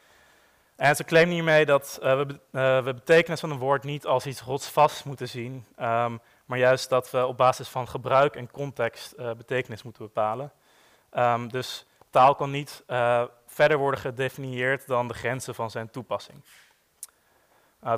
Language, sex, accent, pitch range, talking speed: Dutch, male, Dutch, 115-135 Hz, 165 wpm